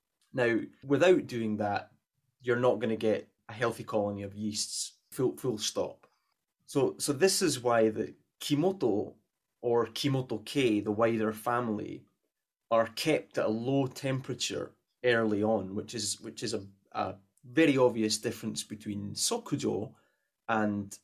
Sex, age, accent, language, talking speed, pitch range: male, 20-39, British, English, 140 wpm, 105-125 Hz